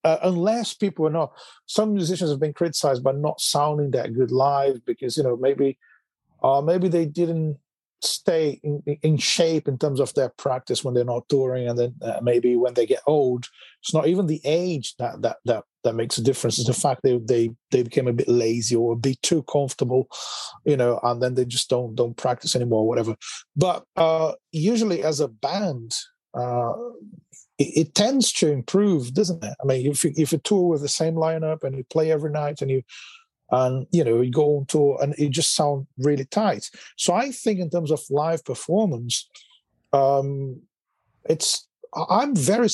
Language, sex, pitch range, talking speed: English, male, 130-165 Hz, 195 wpm